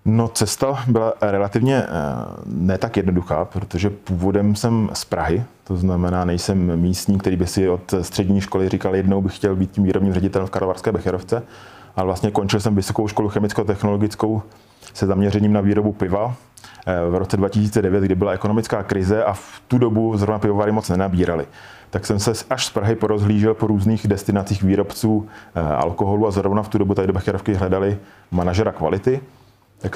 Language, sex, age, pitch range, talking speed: Czech, male, 20-39, 95-110 Hz, 165 wpm